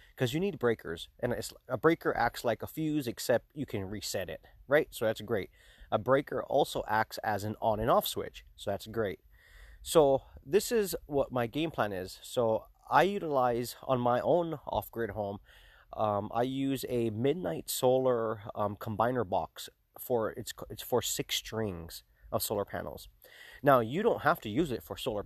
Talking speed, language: 185 wpm, English